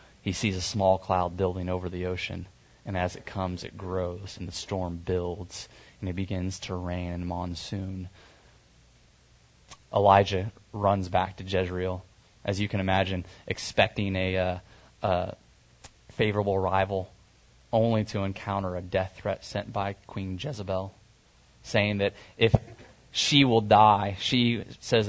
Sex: male